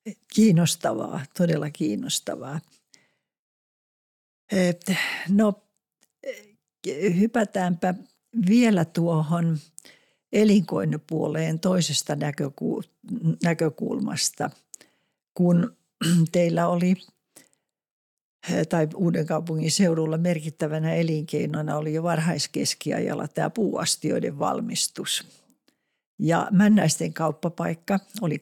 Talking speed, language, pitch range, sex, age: 60 wpm, Finnish, 155-185 Hz, female, 60-79